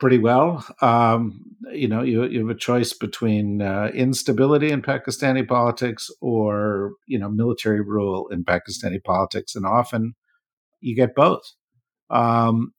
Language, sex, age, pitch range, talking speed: English, male, 50-69, 105-125 Hz, 140 wpm